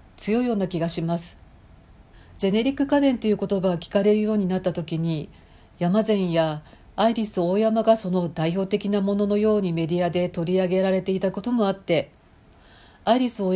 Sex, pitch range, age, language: female, 165-210 Hz, 40-59, Japanese